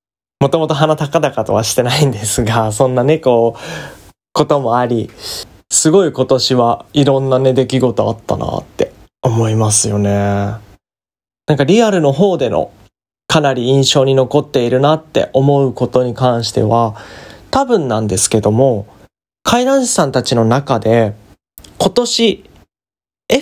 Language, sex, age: Japanese, male, 20-39